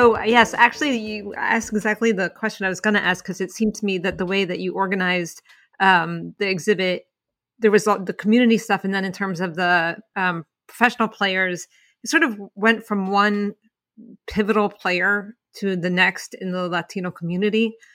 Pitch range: 180-220 Hz